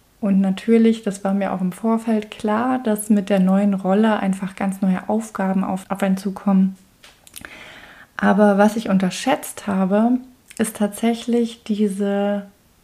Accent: German